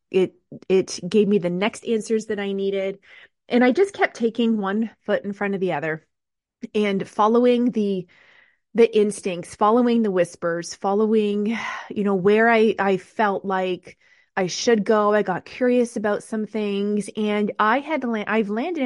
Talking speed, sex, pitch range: 170 wpm, female, 185-225 Hz